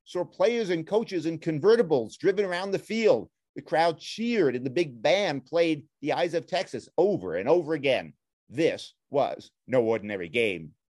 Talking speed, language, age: 170 wpm, English, 40-59